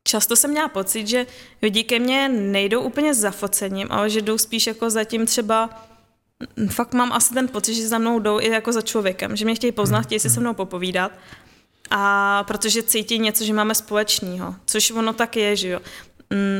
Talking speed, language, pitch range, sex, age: 205 wpm, Czech, 200-225 Hz, female, 20-39